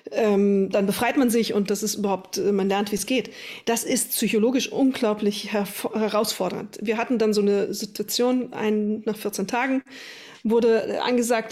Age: 40-59